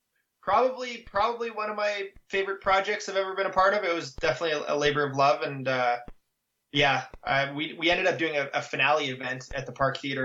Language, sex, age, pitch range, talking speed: English, male, 20-39, 130-165 Hz, 215 wpm